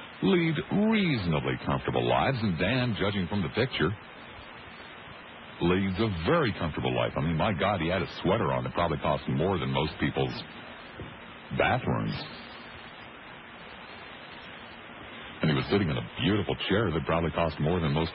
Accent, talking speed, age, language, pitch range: American, 150 wpm, 60-79, English, 70-95 Hz